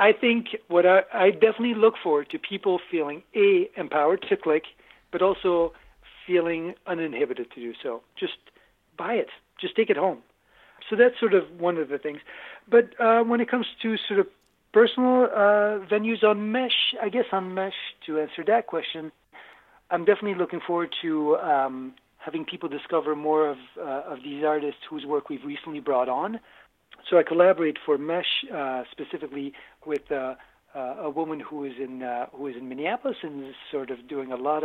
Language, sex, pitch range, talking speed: English, male, 145-215 Hz, 185 wpm